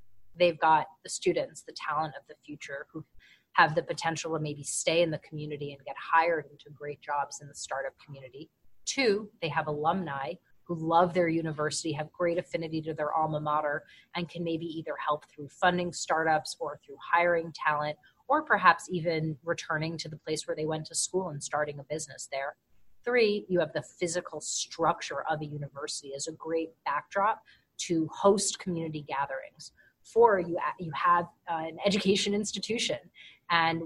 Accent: American